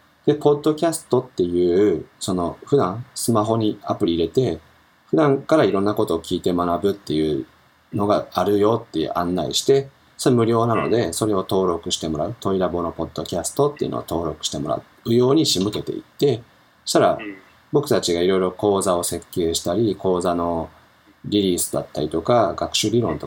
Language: Japanese